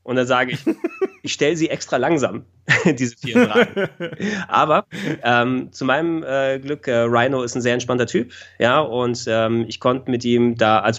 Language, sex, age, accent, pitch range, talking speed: German, male, 20-39, German, 110-135 Hz, 185 wpm